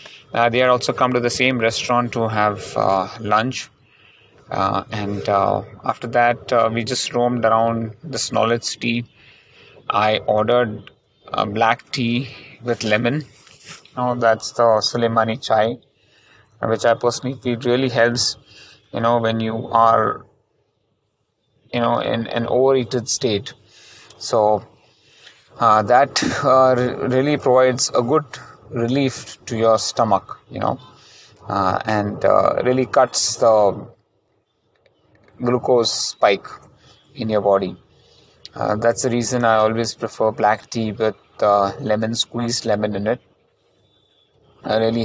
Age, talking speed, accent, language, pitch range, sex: 30-49, 135 wpm, Indian, English, 110-125 Hz, male